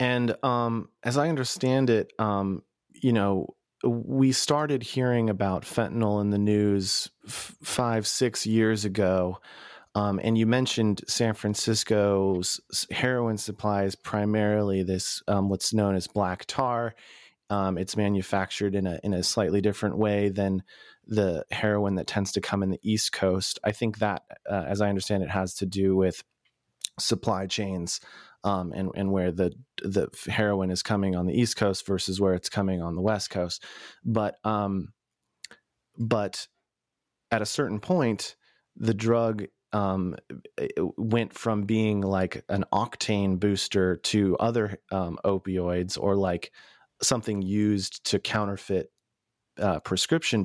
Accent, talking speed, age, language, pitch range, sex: American, 145 wpm, 30-49, English, 95-110 Hz, male